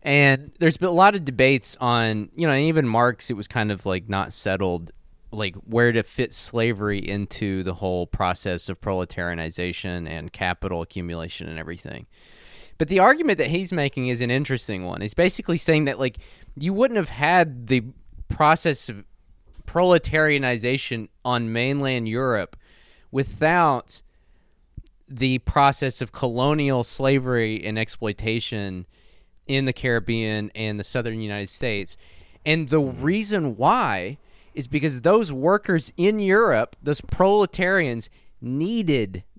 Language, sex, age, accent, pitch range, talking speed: English, male, 20-39, American, 105-160 Hz, 135 wpm